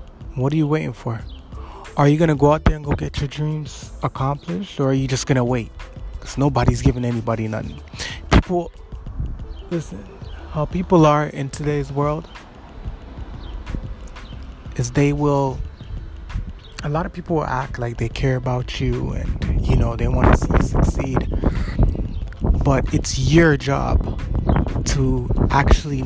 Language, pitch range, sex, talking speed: English, 115-150 Hz, male, 150 wpm